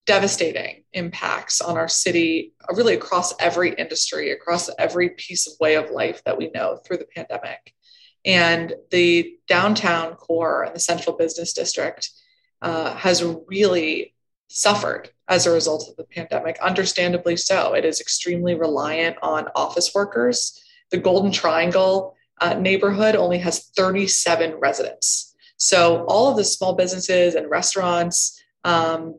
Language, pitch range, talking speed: English, 170-200 Hz, 140 wpm